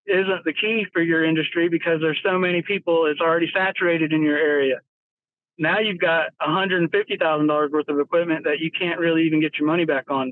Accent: American